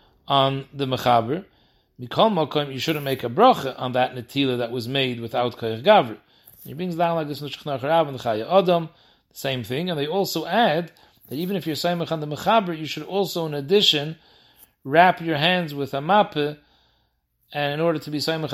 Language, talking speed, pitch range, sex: English, 190 wpm, 130-155 Hz, male